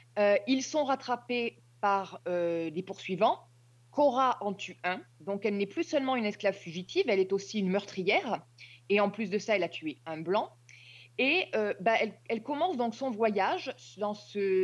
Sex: female